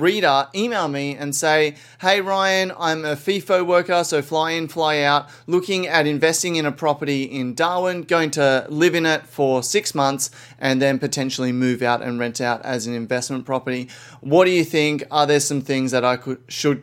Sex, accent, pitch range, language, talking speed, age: male, Australian, 135-175 Hz, English, 195 wpm, 20-39